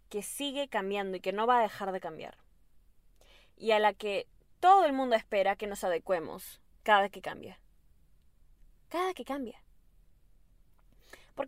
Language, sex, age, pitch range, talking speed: Spanish, female, 20-39, 190-265 Hz, 150 wpm